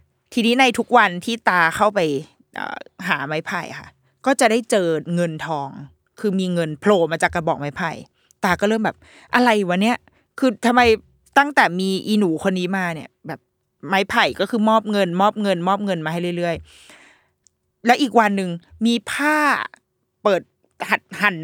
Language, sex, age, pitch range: Thai, female, 20-39, 170-225 Hz